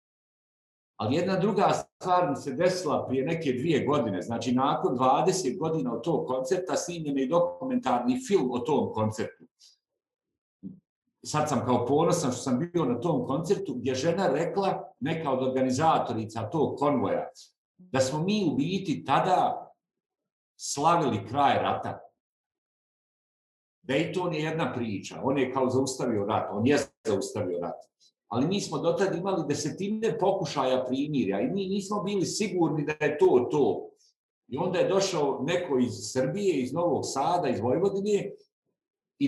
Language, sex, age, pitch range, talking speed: Croatian, male, 50-69, 130-185 Hz, 150 wpm